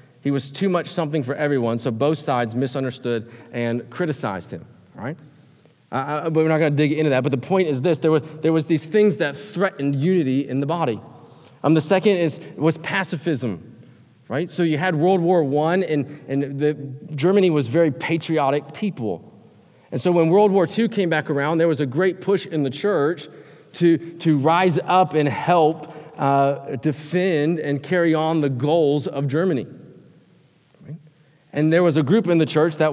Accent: American